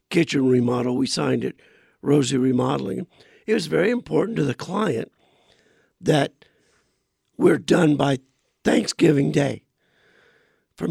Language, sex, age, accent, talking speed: English, male, 60-79, American, 115 wpm